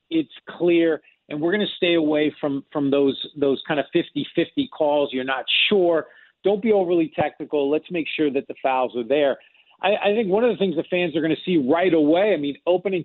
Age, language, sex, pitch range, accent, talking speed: 40-59, English, male, 150-195 Hz, American, 225 wpm